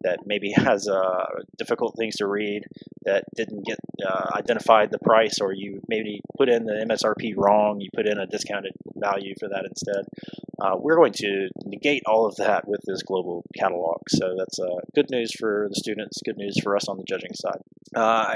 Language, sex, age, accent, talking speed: English, male, 20-39, American, 200 wpm